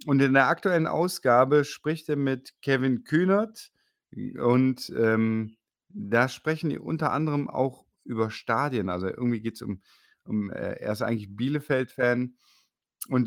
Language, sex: German, male